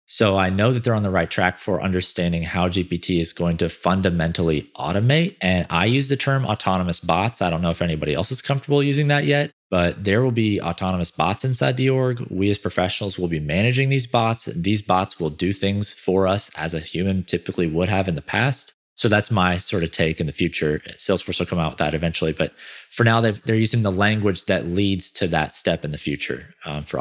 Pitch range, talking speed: 85-105 Hz, 230 wpm